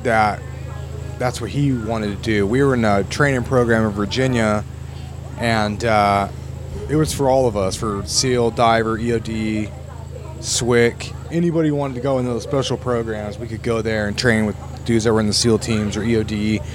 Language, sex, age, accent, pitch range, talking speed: English, male, 30-49, American, 105-125 Hz, 185 wpm